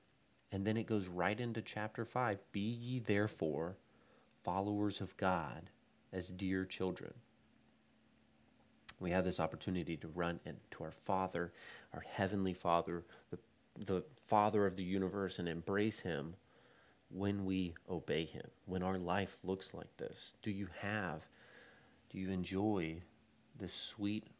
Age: 30-49